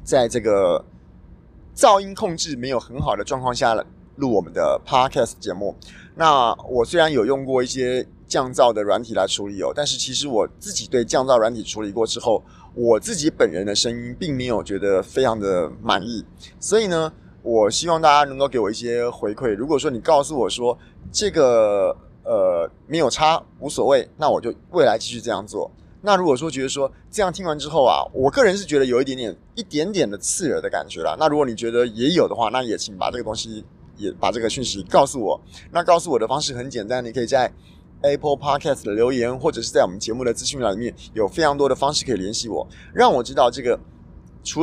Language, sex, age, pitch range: Chinese, male, 20-39, 115-165 Hz